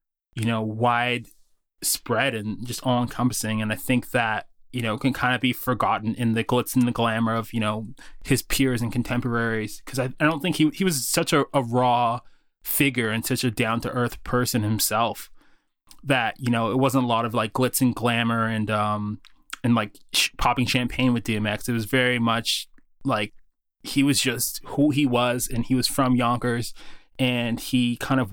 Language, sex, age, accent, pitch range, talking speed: English, male, 20-39, American, 115-125 Hz, 200 wpm